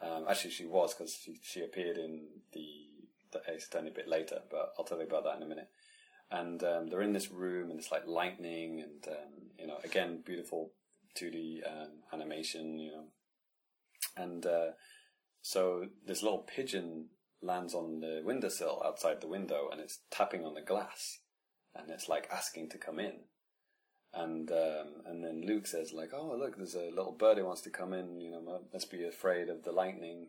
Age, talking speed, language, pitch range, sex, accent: 30-49, 195 wpm, English, 80-95 Hz, male, British